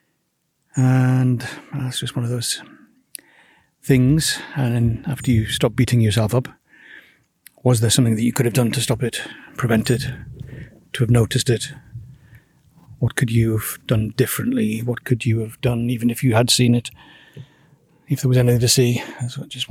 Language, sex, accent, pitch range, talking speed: English, male, British, 115-130 Hz, 175 wpm